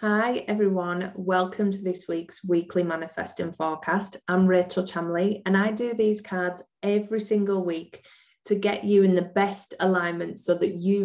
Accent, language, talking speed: British, English, 165 wpm